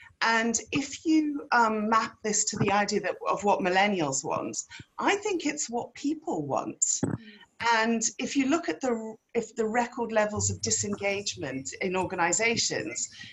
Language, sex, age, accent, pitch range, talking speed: English, female, 40-59, British, 215-285 Hz, 155 wpm